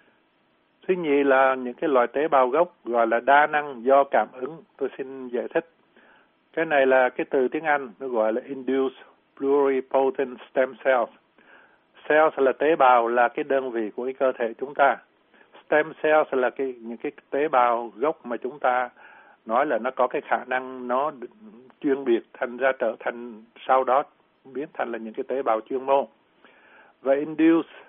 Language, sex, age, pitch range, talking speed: Vietnamese, male, 60-79, 120-145 Hz, 185 wpm